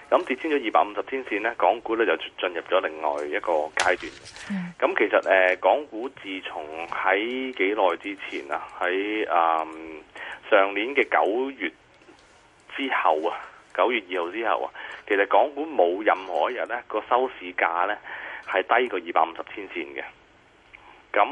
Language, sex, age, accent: Chinese, male, 30-49, native